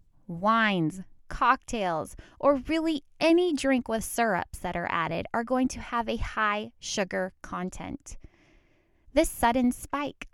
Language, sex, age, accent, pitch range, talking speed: English, female, 20-39, American, 185-245 Hz, 130 wpm